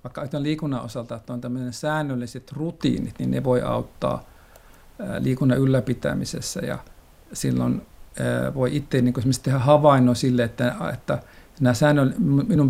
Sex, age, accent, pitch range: male, 50-69, native, 120-135 Hz